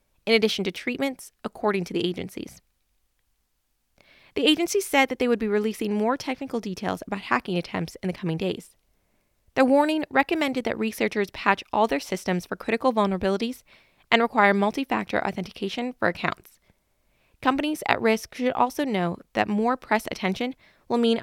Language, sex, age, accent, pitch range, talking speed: English, female, 20-39, American, 190-255 Hz, 160 wpm